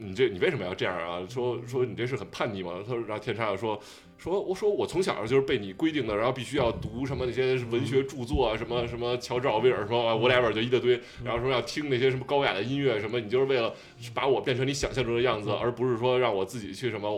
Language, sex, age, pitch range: Chinese, male, 20-39, 105-130 Hz